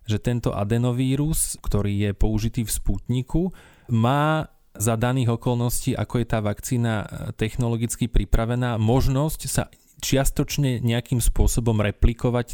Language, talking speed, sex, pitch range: Slovak, 115 wpm, male, 110-135 Hz